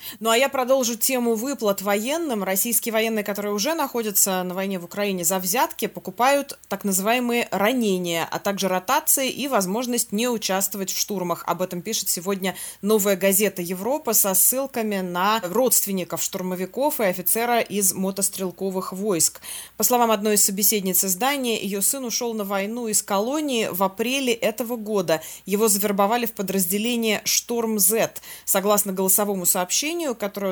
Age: 20-39